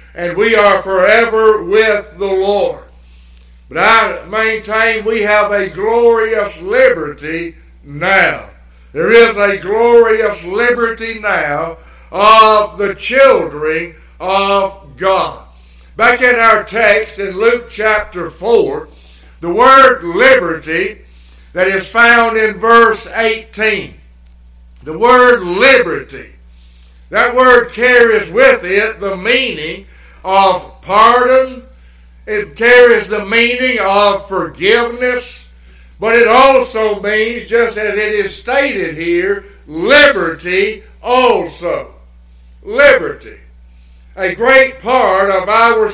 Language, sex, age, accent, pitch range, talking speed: English, male, 60-79, American, 170-230 Hz, 105 wpm